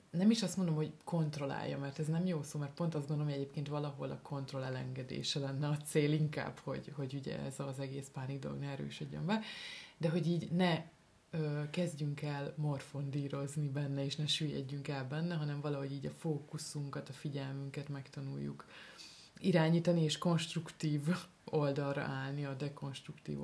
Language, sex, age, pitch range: Hungarian, female, 20-39, 140-165 Hz